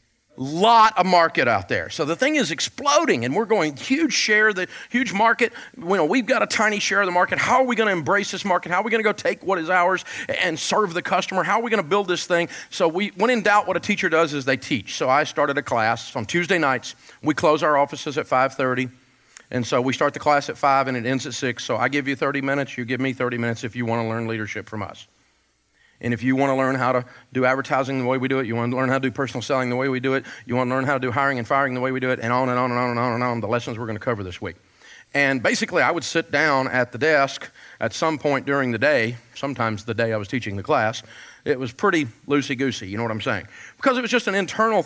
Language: English